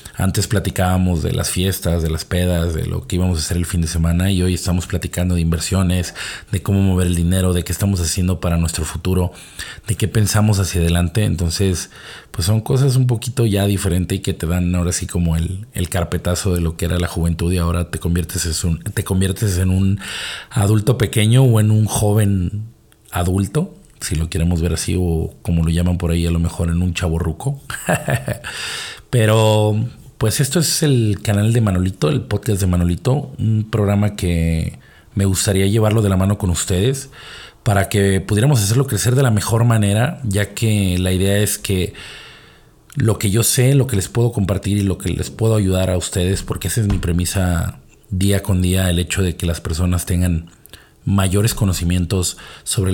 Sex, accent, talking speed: male, Mexican, 195 wpm